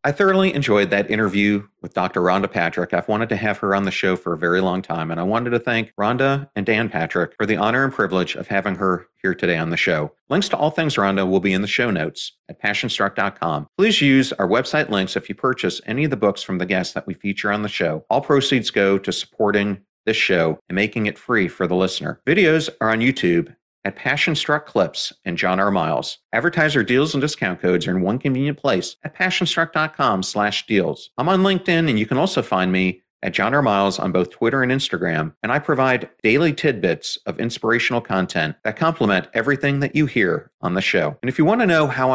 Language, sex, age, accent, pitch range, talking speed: English, male, 40-59, American, 95-145 Hz, 225 wpm